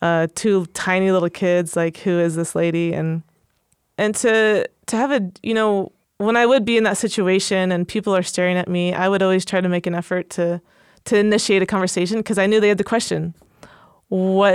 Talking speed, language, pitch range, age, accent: 215 wpm, English, 165-195 Hz, 20-39, American